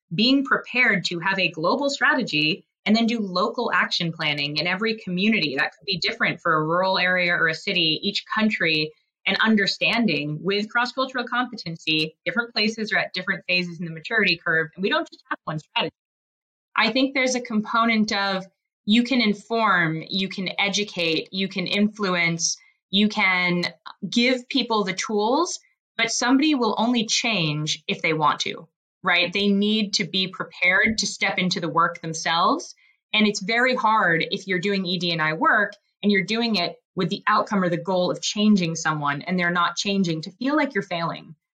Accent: American